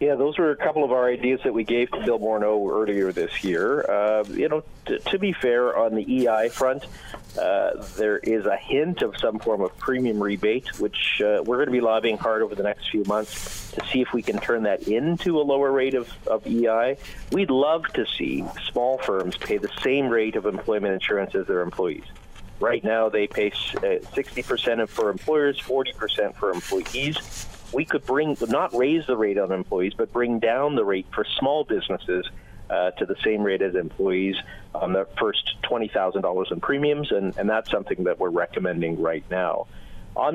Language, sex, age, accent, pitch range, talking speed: English, male, 40-59, American, 105-145 Hz, 195 wpm